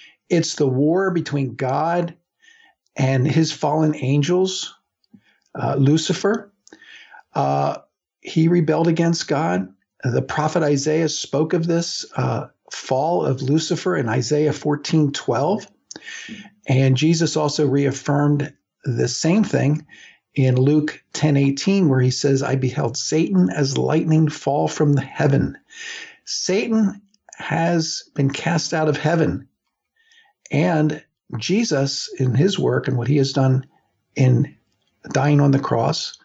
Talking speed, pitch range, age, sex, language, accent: 120 wpm, 135-170 Hz, 50-69, male, English, American